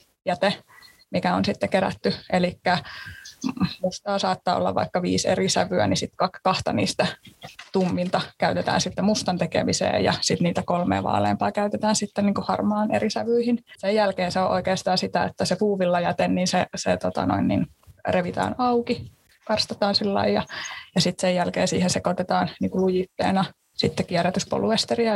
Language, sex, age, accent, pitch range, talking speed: Finnish, female, 20-39, native, 180-215 Hz, 160 wpm